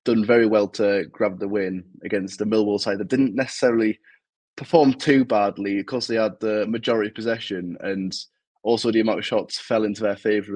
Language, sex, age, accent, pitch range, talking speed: English, male, 20-39, British, 100-115 Hz, 190 wpm